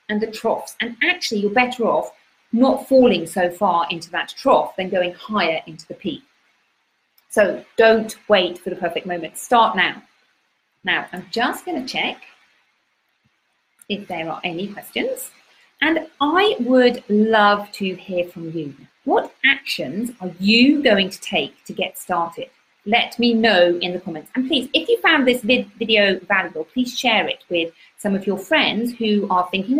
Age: 40-59